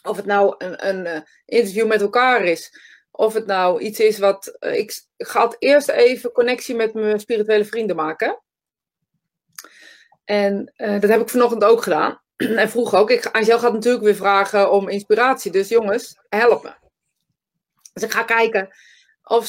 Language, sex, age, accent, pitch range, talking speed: Dutch, female, 20-39, Dutch, 200-250 Hz, 155 wpm